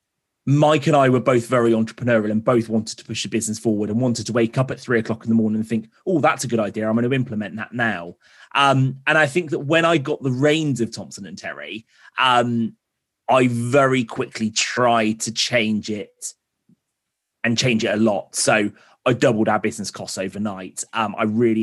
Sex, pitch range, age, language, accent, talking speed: male, 110-130 Hz, 30-49, English, British, 210 wpm